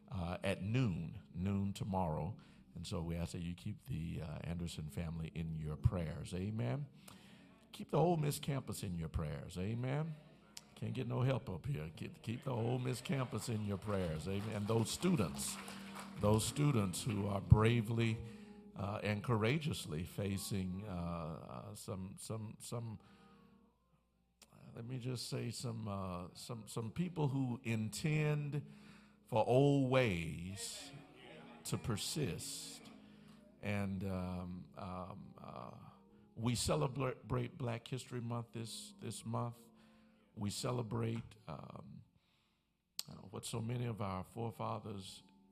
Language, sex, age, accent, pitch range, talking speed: English, male, 50-69, American, 95-130 Hz, 135 wpm